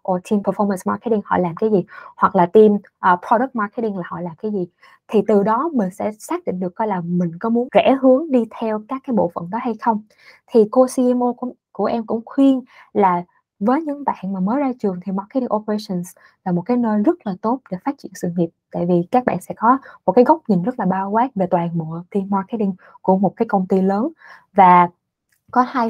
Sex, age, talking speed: female, 20-39, 235 wpm